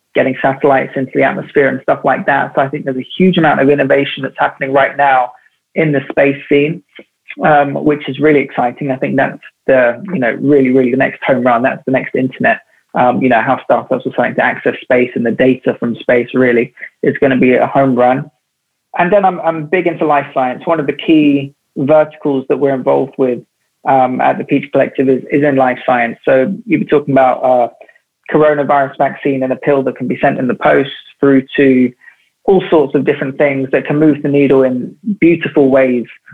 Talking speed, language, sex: 215 wpm, English, male